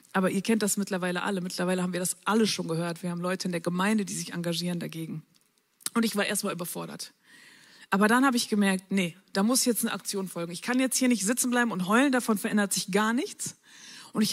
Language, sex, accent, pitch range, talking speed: German, female, German, 195-255 Hz, 235 wpm